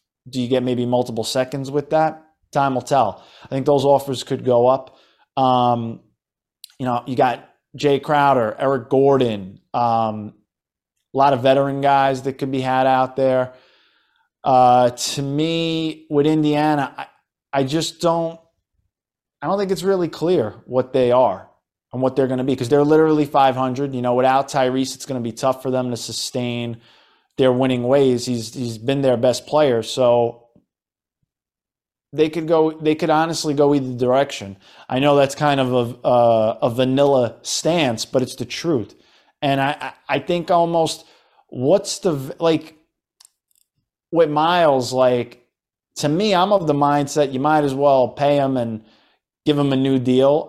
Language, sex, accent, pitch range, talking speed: English, male, American, 125-145 Hz, 170 wpm